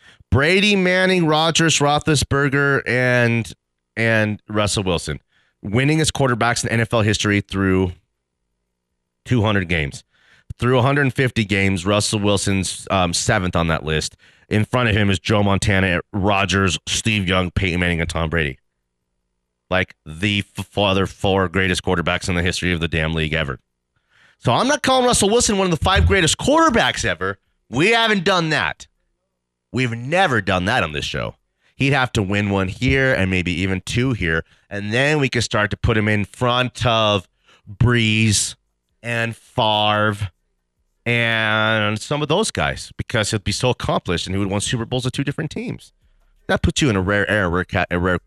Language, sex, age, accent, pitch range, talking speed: English, male, 30-49, American, 90-125 Hz, 170 wpm